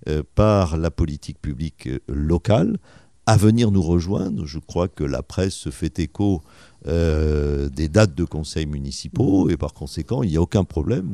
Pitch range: 80-110 Hz